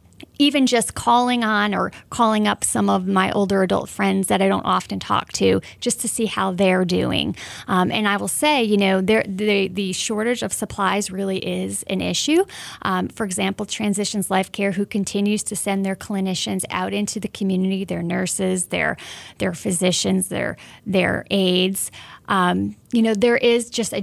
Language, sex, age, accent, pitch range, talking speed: English, female, 30-49, American, 185-210 Hz, 180 wpm